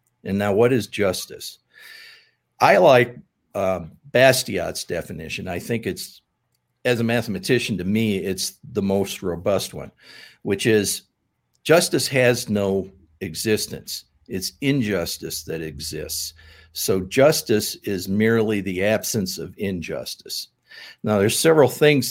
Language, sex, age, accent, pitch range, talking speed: English, male, 50-69, American, 95-130 Hz, 120 wpm